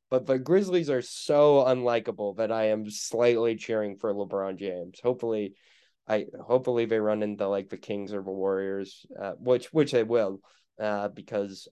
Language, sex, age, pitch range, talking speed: English, male, 20-39, 110-150 Hz, 170 wpm